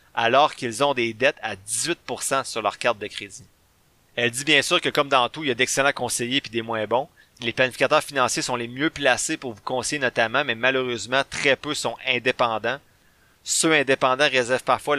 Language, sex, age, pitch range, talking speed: French, male, 30-49, 115-140 Hz, 200 wpm